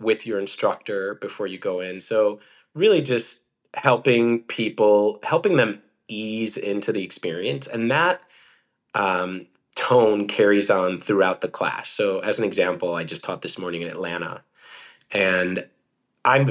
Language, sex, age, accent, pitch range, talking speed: English, male, 30-49, American, 95-125 Hz, 145 wpm